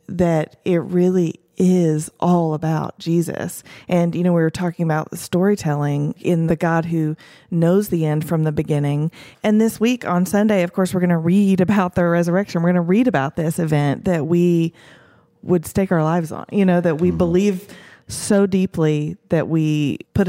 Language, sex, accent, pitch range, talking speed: English, female, American, 160-185 Hz, 190 wpm